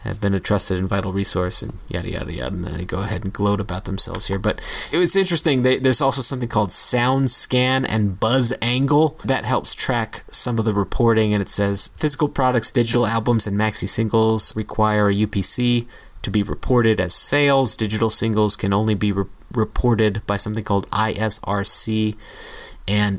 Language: English